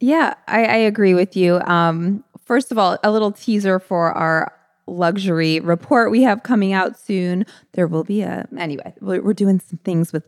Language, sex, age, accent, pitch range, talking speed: English, female, 20-39, American, 175-220 Hz, 185 wpm